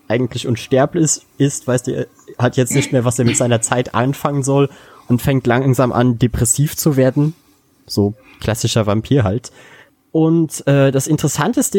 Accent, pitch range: German, 110-135 Hz